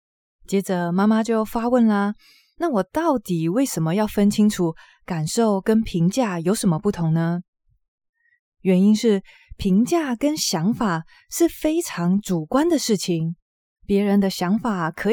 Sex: female